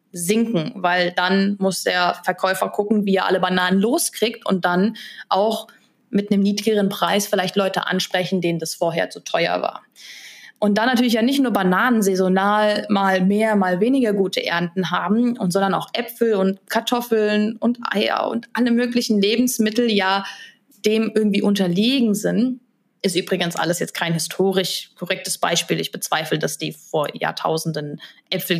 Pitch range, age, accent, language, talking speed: 180-220 Hz, 20-39, German, German, 155 wpm